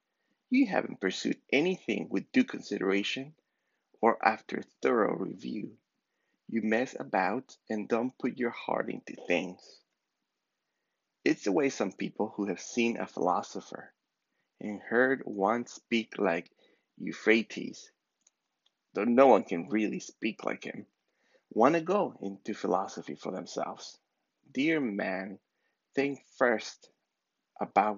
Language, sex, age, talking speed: English, male, 30-49, 120 wpm